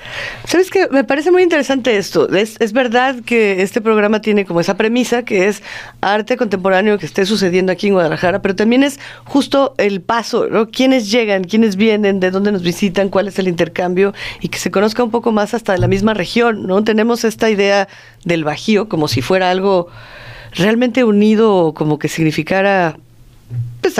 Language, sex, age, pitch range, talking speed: Spanish, female, 40-59, 170-230 Hz, 185 wpm